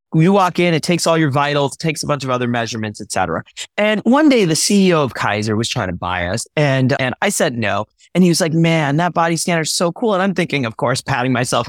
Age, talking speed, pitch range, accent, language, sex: 30-49, 260 wpm, 130-205 Hz, American, English, male